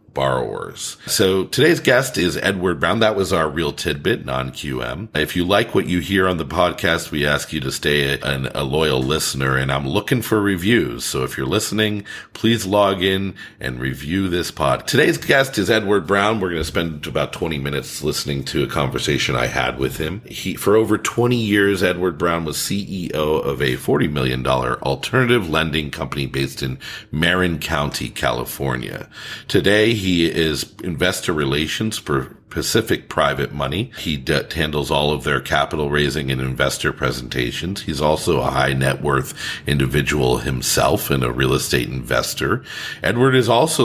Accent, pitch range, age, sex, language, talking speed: American, 70-100 Hz, 40-59, male, English, 170 wpm